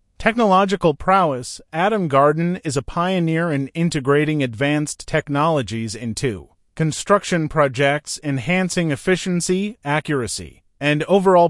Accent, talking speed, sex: American, 100 wpm, male